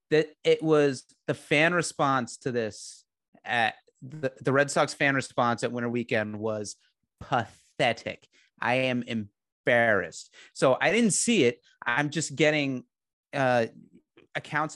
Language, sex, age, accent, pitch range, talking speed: English, male, 30-49, American, 125-155 Hz, 135 wpm